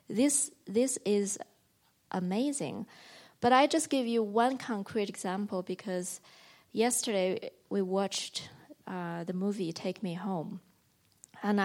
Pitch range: 180-220 Hz